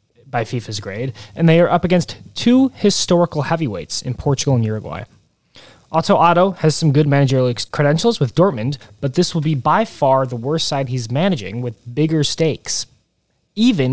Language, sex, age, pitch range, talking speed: English, male, 20-39, 125-180 Hz, 170 wpm